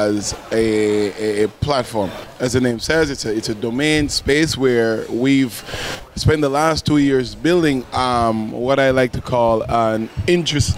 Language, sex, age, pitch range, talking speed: English, male, 20-39, 125-140 Hz, 165 wpm